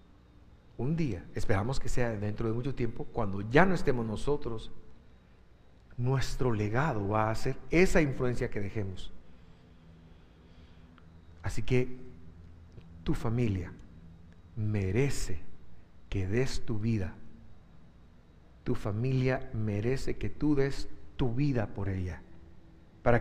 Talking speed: 110 wpm